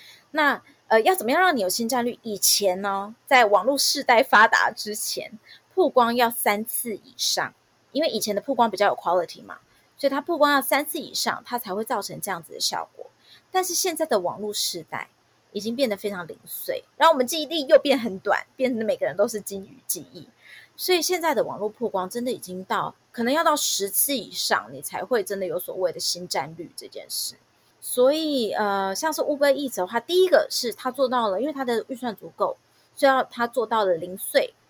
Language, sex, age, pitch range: Chinese, female, 20-39, 210-305 Hz